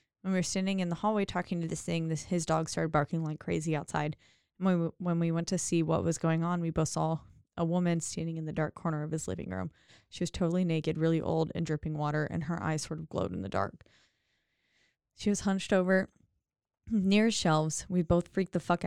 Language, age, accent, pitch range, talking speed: English, 20-39, American, 160-175 Hz, 235 wpm